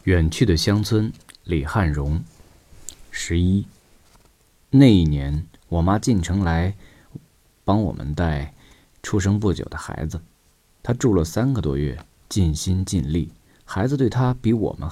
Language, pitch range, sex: Chinese, 80-110 Hz, male